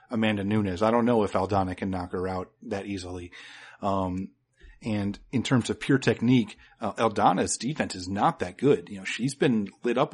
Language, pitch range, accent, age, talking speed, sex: English, 100-130 Hz, American, 30-49, 195 wpm, male